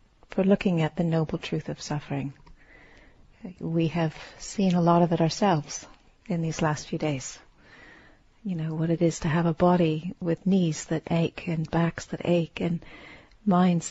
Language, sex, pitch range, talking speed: English, female, 160-195 Hz, 175 wpm